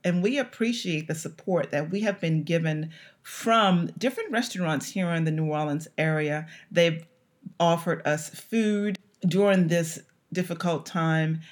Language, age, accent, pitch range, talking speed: English, 40-59, American, 155-200 Hz, 140 wpm